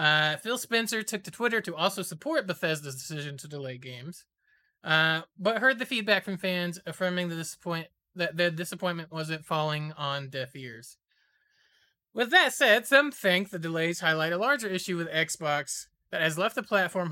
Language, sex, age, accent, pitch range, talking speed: English, male, 30-49, American, 160-210 Hz, 175 wpm